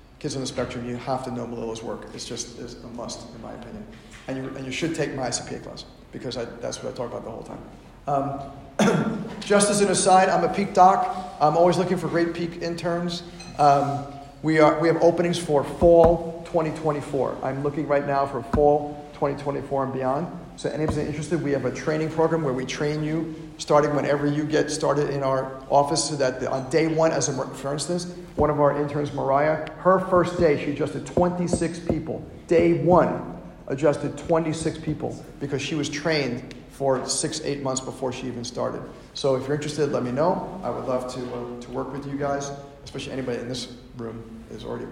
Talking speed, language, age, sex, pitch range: 205 wpm, English, 50-69, male, 130-160 Hz